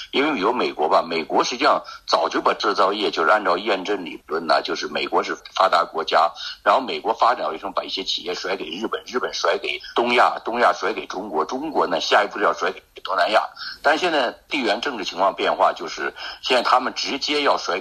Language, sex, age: Chinese, male, 50-69